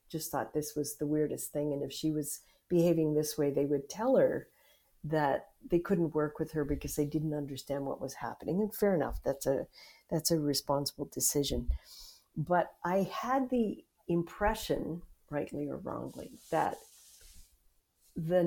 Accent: American